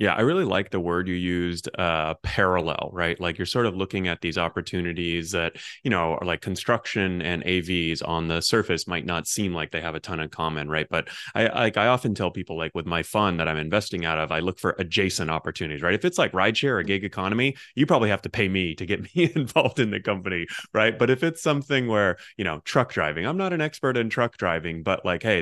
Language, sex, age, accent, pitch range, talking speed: English, male, 30-49, American, 85-105 Hz, 245 wpm